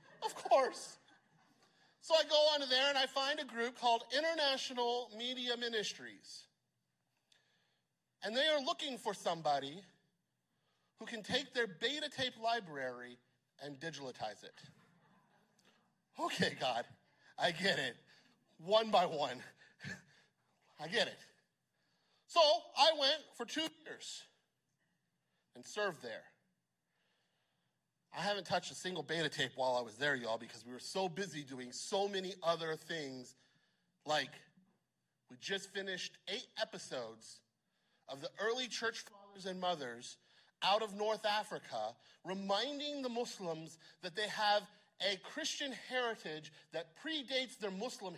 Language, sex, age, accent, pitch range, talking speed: English, male, 40-59, American, 160-250 Hz, 130 wpm